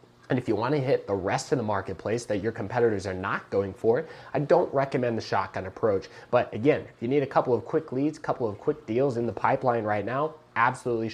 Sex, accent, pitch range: male, American, 105-140 Hz